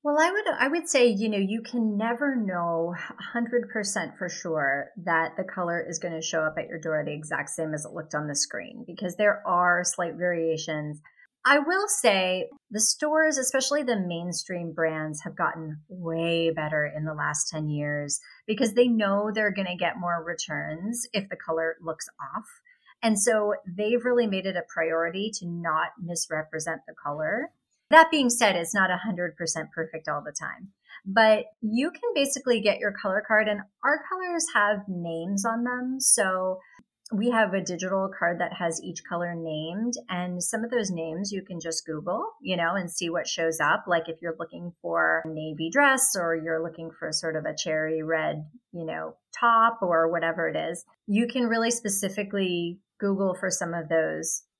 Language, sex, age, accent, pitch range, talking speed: English, female, 30-49, American, 165-225 Hz, 185 wpm